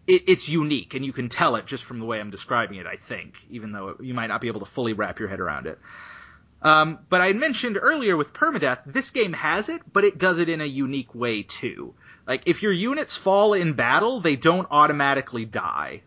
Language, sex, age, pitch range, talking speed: English, male, 30-49, 130-175 Hz, 230 wpm